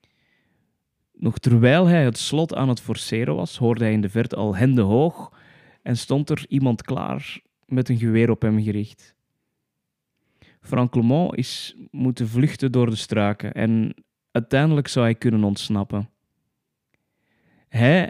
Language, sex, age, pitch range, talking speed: Dutch, male, 20-39, 105-130 Hz, 145 wpm